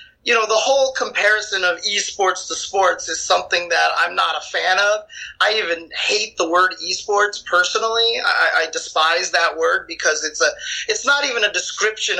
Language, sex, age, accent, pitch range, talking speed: English, male, 30-49, American, 185-280 Hz, 180 wpm